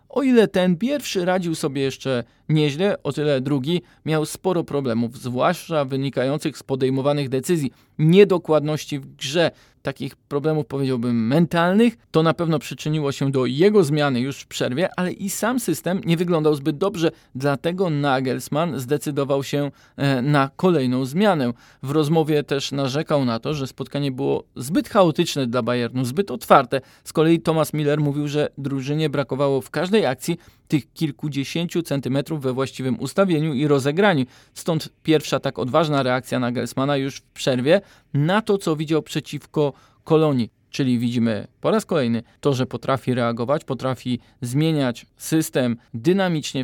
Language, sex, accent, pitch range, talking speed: Polish, male, native, 130-165 Hz, 150 wpm